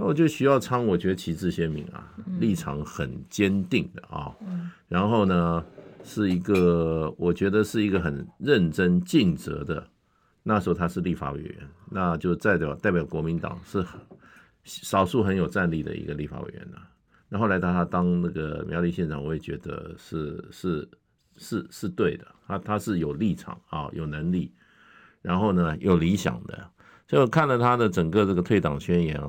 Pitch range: 85-105 Hz